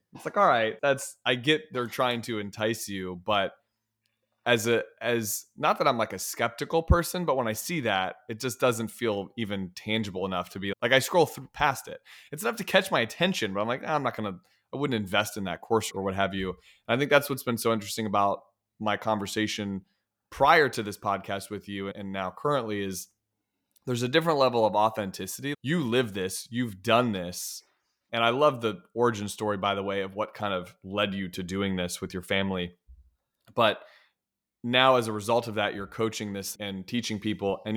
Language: English